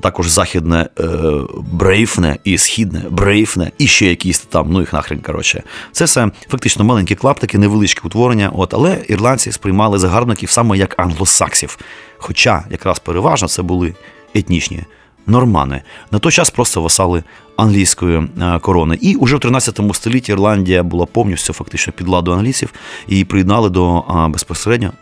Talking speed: 145 wpm